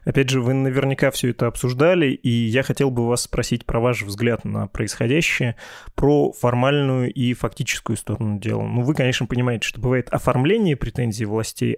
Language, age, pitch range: Russian, 20-39, 110-130 Hz